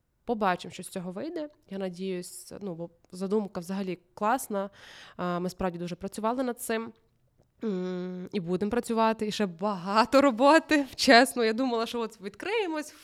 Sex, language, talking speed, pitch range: female, Russian, 145 wpm, 185-230 Hz